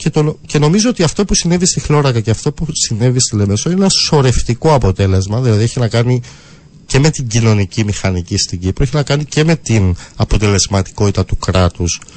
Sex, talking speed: male, 195 wpm